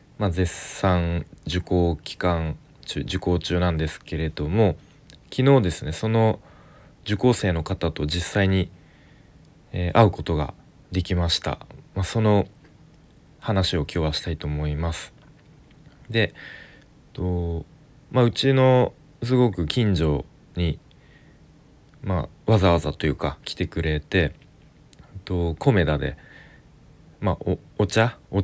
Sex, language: male, Japanese